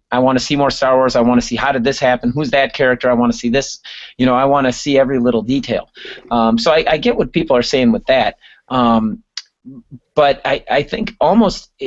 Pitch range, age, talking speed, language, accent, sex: 120-150 Hz, 30-49, 250 wpm, English, American, male